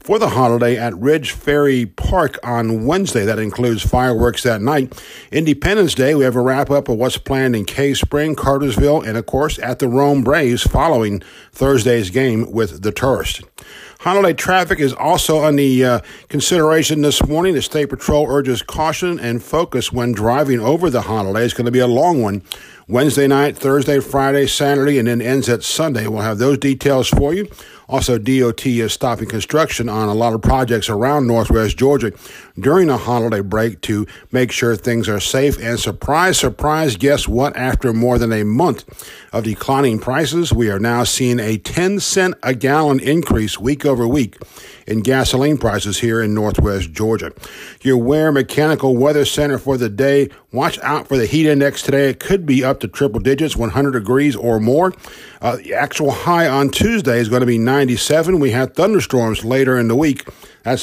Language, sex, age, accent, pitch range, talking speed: English, male, 50-69, American, 115-140 Hz, 180 wpm